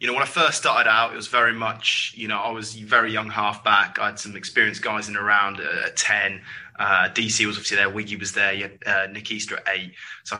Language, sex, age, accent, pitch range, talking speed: English, male, 20-39, British, 105-110 Hz, 260 wpm